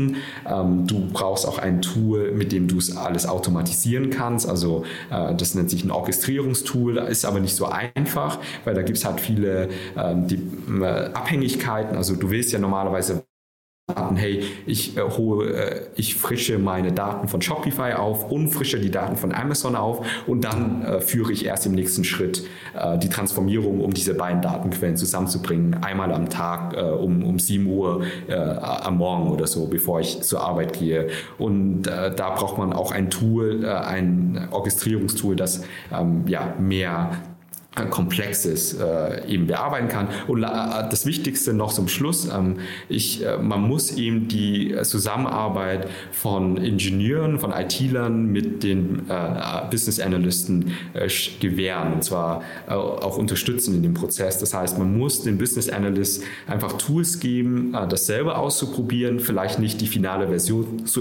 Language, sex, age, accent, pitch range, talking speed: German, male, 40-59, German, 90-115 Hz, 160 wpm